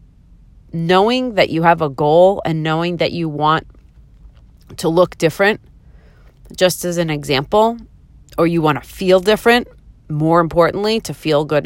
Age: 30-49